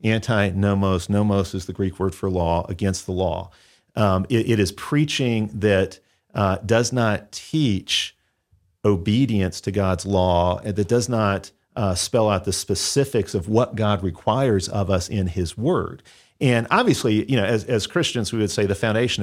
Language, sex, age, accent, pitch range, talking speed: English, male, 40-59, American, 95-120 Hz, 170 wpm